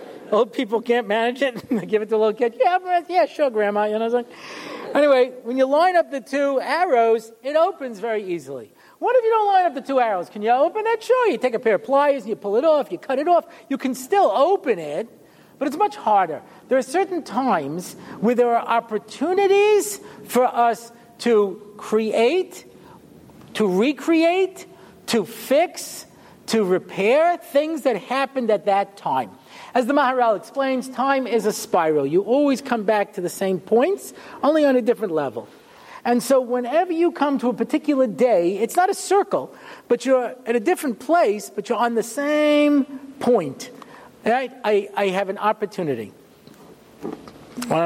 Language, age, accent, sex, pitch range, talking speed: English, 50-69, American, male, 210-290 Hz, 185 wpm